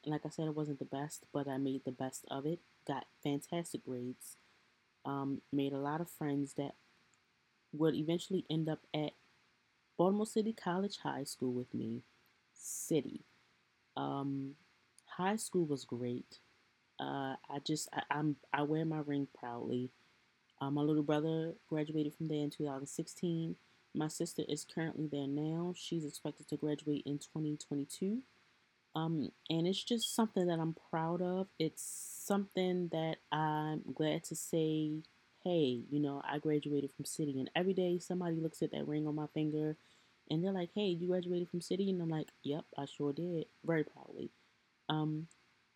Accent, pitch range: American, 145-170 Hz